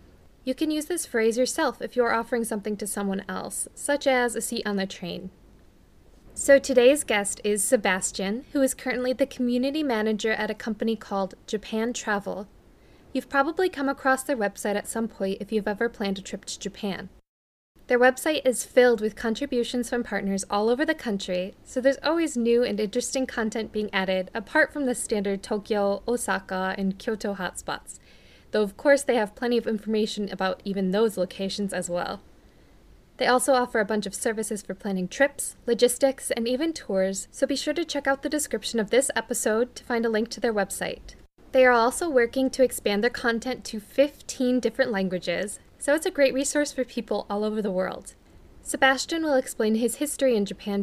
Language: English